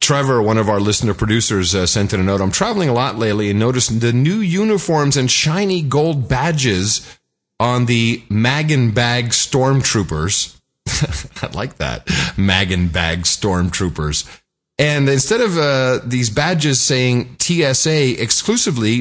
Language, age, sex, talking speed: English, 40-59, male, 150 wpm